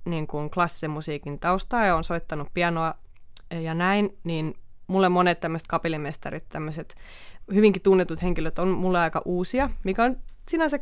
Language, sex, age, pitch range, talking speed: Finnish, female, 20-39, 160-195 Hz, 145 wpm